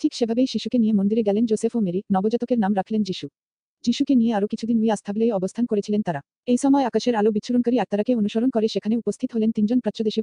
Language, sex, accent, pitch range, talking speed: Bengali, female, native, 205-235 Hz, 215 wpm